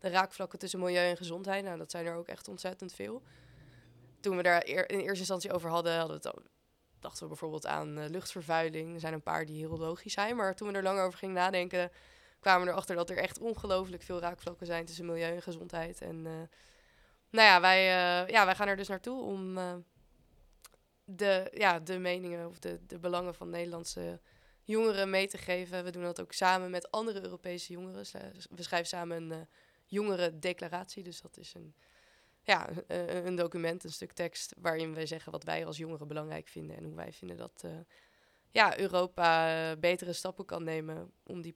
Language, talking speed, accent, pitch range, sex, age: Dutch, 195 wpm, Dutch, 165-190 Hz, female, 20-39